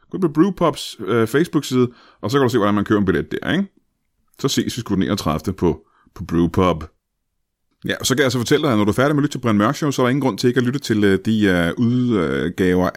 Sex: male